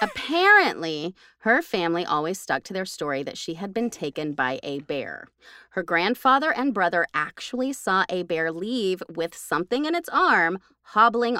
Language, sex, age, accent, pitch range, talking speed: English, female, 30-49, American, 165-260 Hz, 165 wpm